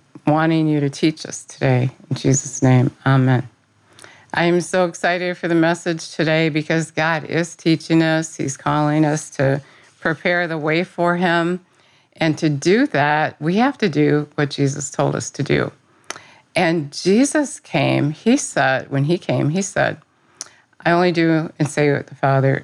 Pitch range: 140-170 Hz